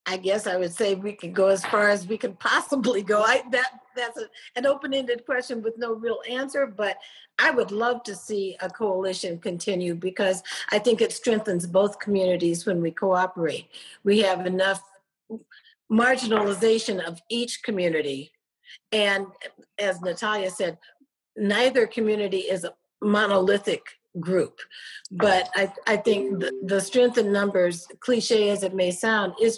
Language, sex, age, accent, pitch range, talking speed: English, female, 50-69, American, 185-225 Hz, 160 wpm